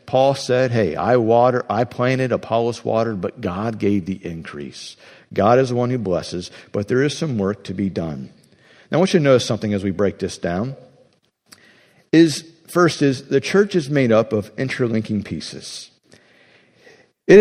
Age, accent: 50-69, American